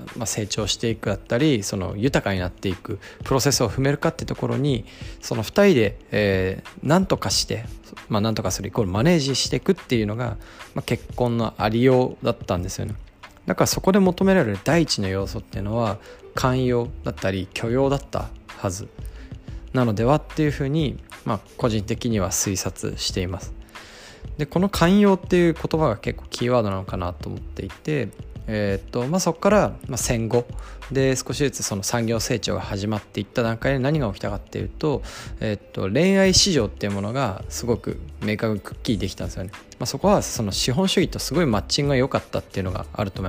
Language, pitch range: Japanese, 100-135 Hz